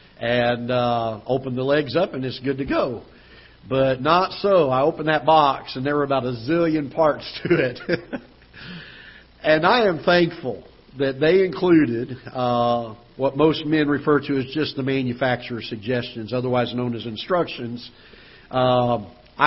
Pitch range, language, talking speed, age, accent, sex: 125-150 Hz, English, 155 wpm, 50-69, American, male